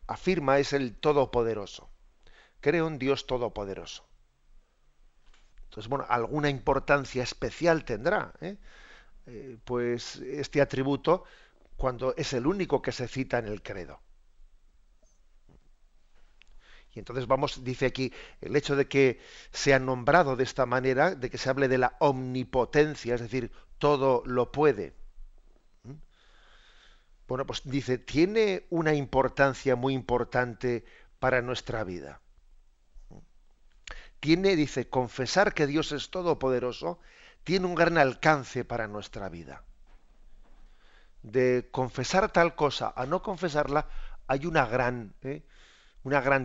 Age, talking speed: 50-69, 120 wpm